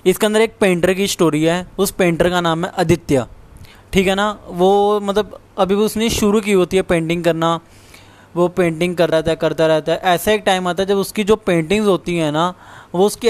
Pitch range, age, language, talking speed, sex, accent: 155-195 Hz, 10-29, Hindi, 220 wpm, male, native